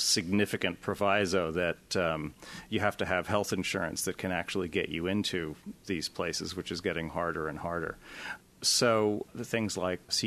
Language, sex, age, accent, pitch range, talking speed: English, male, 40-59, American, 95-115 Hz, 170 wpm